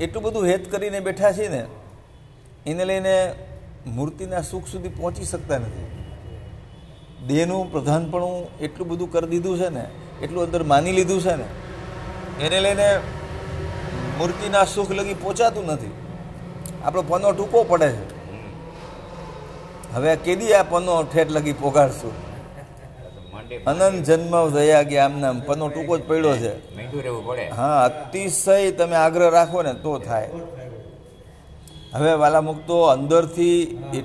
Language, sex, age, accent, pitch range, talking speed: English, male, 50-69, Indian, 130-175 Hz, 90 wpm